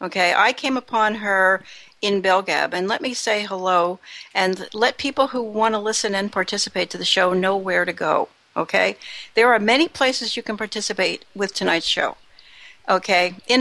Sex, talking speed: female, 180 wpm